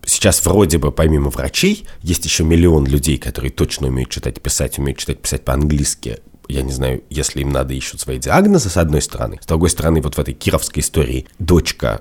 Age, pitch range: 30-49, 75-95 Hz